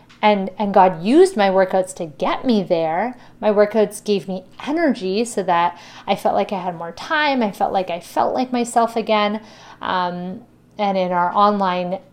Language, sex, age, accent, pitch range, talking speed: English, female, 30-49, American, 185-225 Hz, 185 wpm